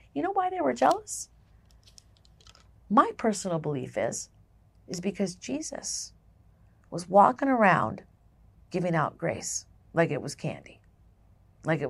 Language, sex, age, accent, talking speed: English, female, 40-59, American, 125 wpm